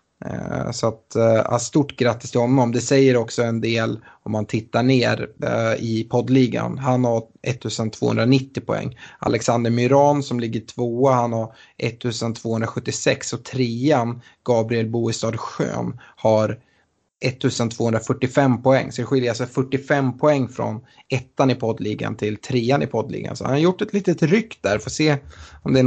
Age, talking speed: 20-39, 150 wpm